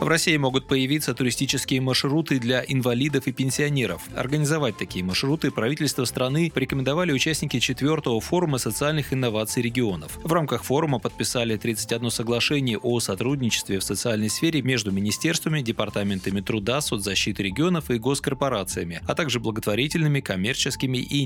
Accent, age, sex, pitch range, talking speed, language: native, 20-39, male, 110-140 Hz, 130 wpm, Russian